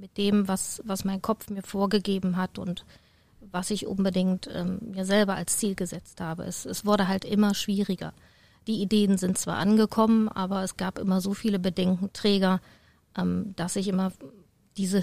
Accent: German